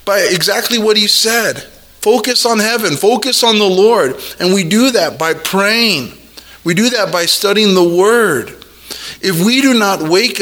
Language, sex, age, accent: English, male, 20-39, American